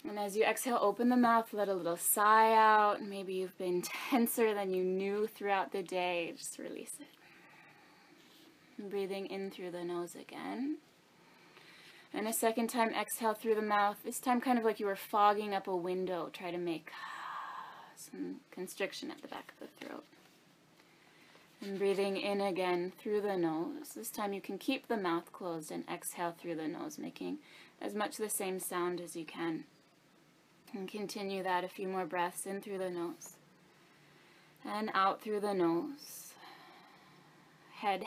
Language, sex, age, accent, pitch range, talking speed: English, female, 20-39, American, 180-220 Hz, 170 wpm